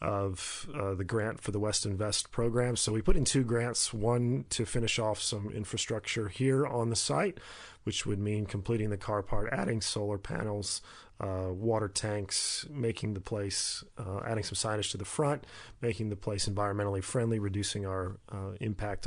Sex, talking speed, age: male, 180 wpm, 40-59